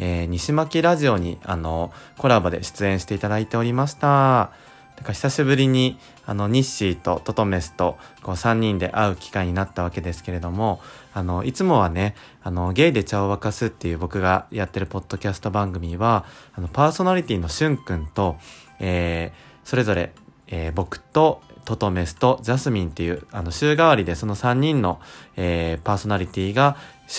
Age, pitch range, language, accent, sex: 20-39, 90-125 Hz, Japanese, native, male